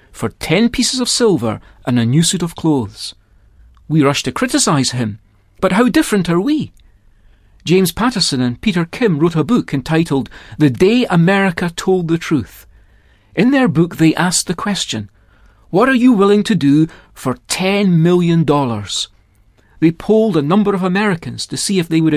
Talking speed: 175 wpm